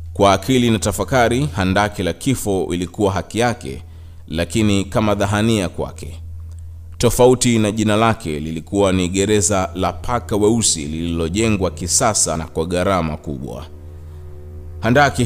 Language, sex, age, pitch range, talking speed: Swahili, male, 30-49, 85-105 Hz, 120 wpm